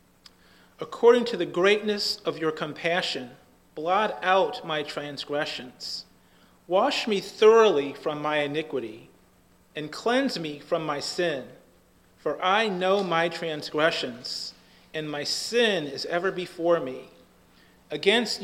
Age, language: 40-59, English